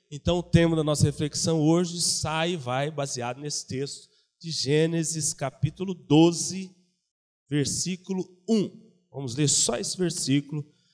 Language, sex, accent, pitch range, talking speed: Portuguese, male, Brazilian, 130-185 Hz, 130 wpm